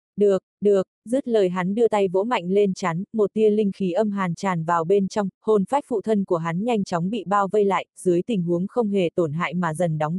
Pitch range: 185-220 Hz